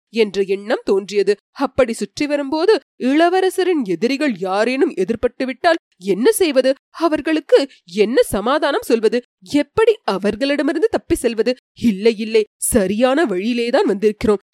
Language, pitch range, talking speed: Tamil, 220-300 Hz, 105 wpm